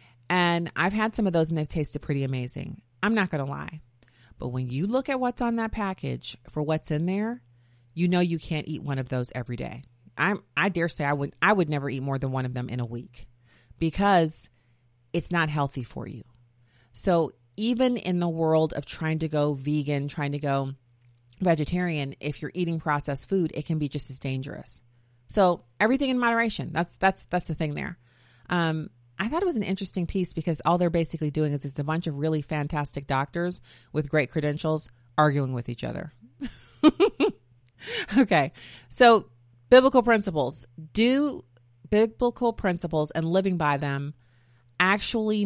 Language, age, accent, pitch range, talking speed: English, 30-49, American, 135-200 Hz, 185 wpm